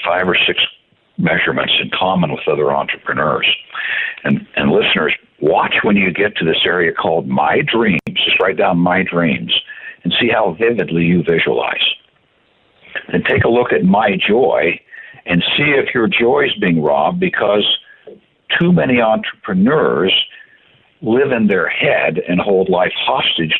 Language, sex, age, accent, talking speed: English, male, 60-79, American, 155 wpm